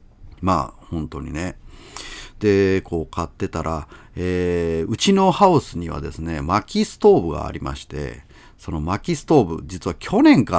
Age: 40-59